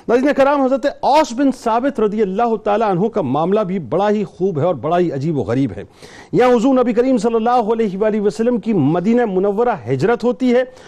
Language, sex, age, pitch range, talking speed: Urdu, male, 50-69, 210-255 Hz, 180 wpm